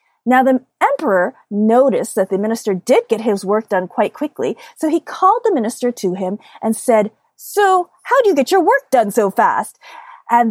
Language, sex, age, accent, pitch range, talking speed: English, female, 30-49, American, 220-300 Hz, 195 wpm